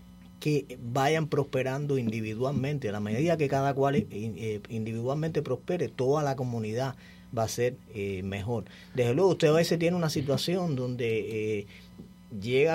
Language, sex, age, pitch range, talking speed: English, male, 30-49, 110-150 Hz, 135 wpm